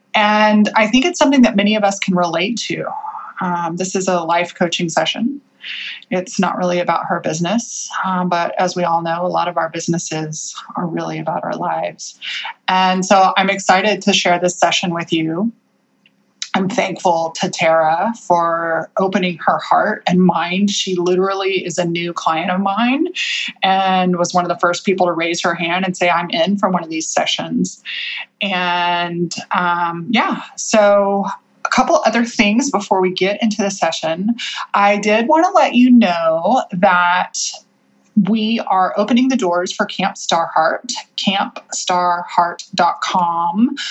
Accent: American